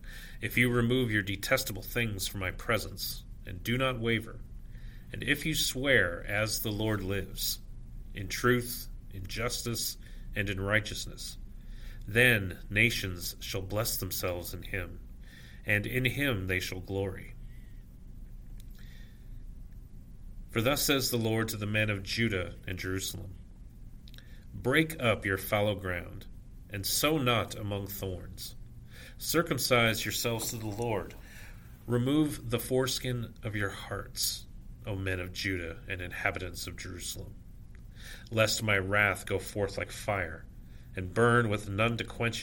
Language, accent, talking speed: English, American, 135 wpm